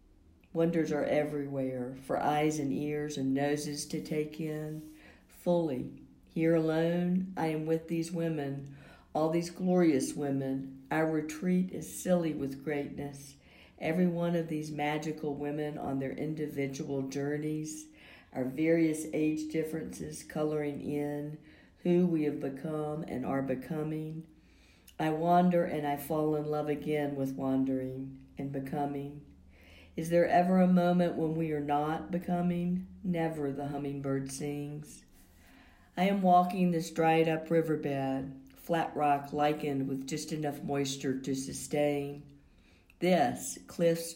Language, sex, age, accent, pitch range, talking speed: English, female, 60-79, American, 140-160 Hz, 130 wpm